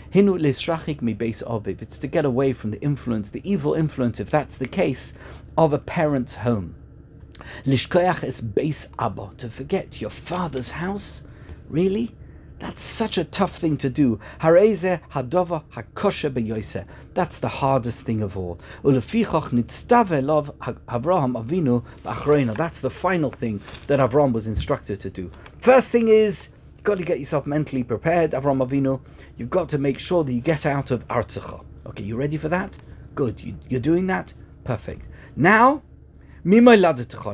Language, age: English, 50-69